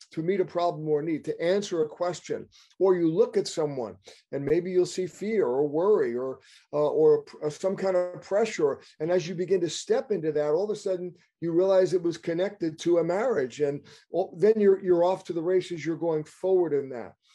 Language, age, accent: English, 50-69, American